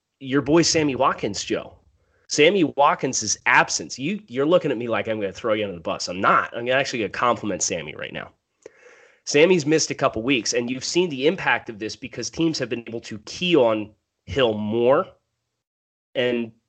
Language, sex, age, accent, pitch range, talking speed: English, male, 30-49, American, 105-135 Hz, 200 wpm